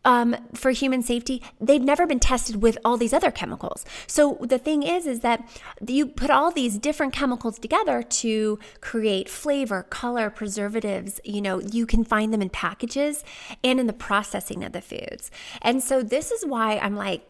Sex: female